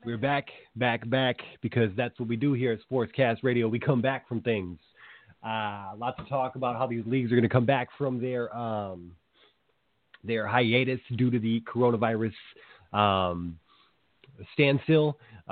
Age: 30-49